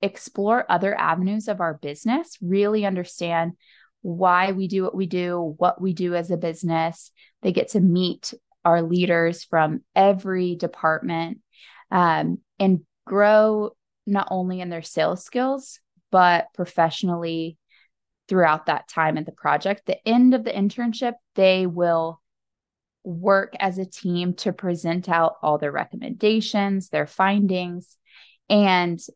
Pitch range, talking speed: 170-210 Hz, 135 wpm